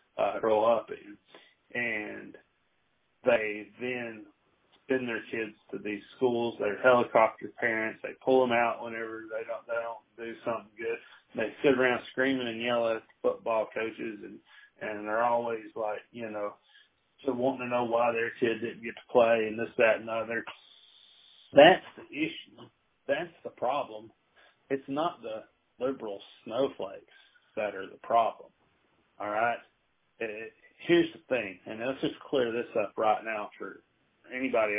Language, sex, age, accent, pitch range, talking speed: English, male, 40-59, American, 110-145 Hz, 160 wpm